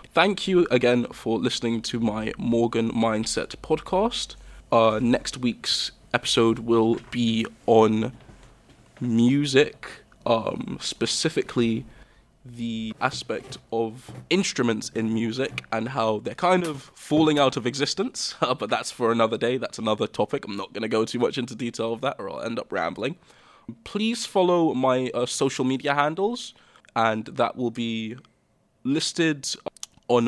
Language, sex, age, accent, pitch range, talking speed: English, male, 20-39, British, 115-135 Hz, 145 wpm